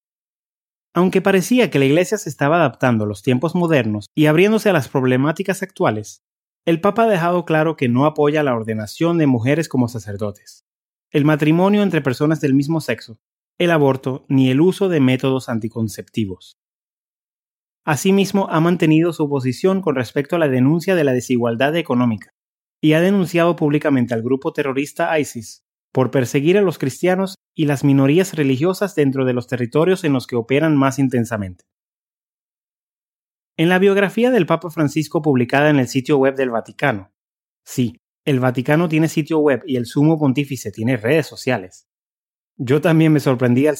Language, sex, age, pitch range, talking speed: English, male, 30-49, 125-165 Hz, 165 wpm